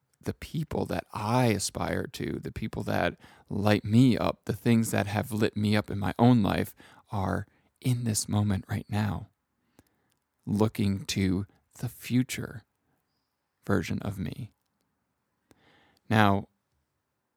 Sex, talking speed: male, 130 wpm